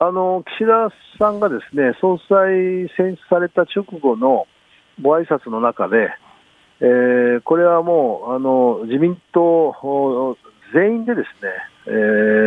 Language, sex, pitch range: Japanese, male, 110-165 Hz